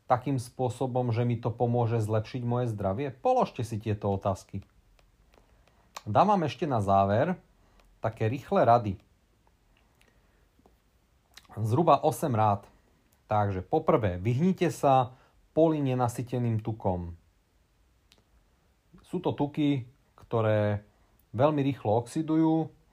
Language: Slovak